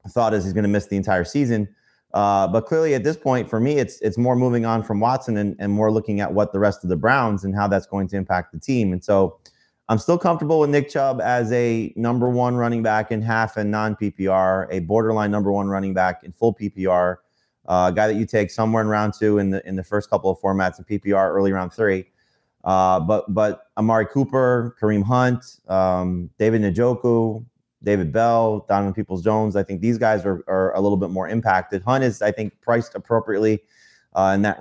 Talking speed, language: 225 wpm, English